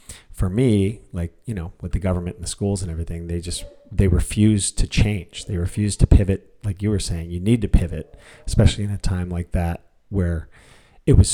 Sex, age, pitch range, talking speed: male, 40-59, 90-105 Hz, 210 wpm